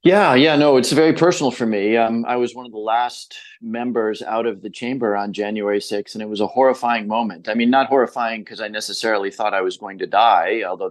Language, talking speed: English, 235 wpm